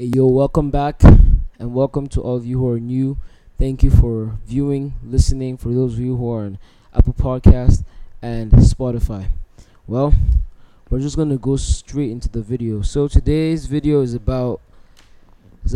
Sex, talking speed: male, 170 wpm